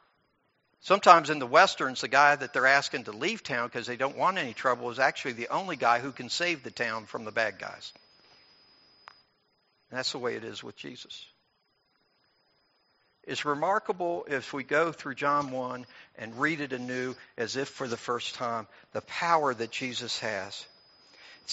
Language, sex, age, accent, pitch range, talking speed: English, male, 60-79, American, 125-155 Hz, 180 wpm